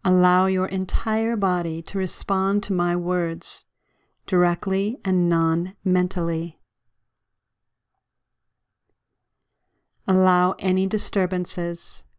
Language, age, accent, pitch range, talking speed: English, 40-59, American, 120-190 Hz, 75 wpm